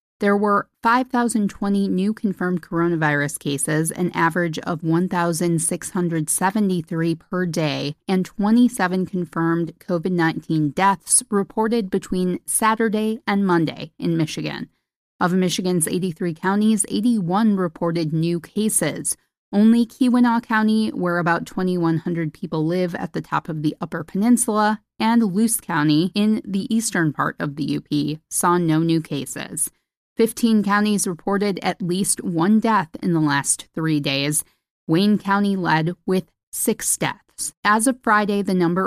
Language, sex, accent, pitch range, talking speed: English, female, American, 170-215 Hz, 130 wpm